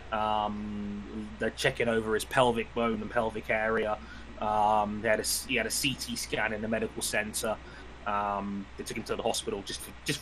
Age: 20-39